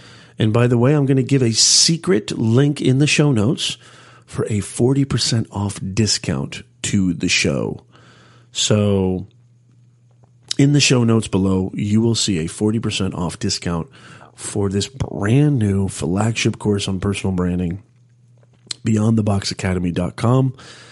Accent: American